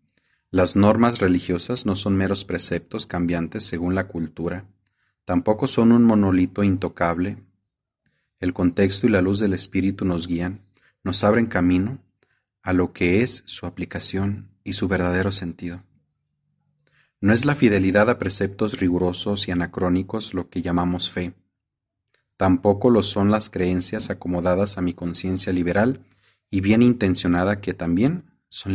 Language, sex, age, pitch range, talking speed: Spanish, male, 40-59, 90-105 Hz, 140 wpm